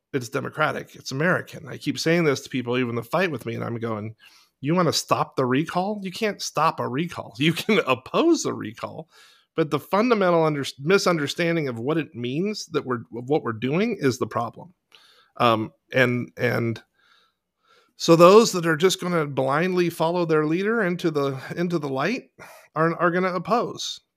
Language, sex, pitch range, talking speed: English, male, 120-160 Hz, 185 wpm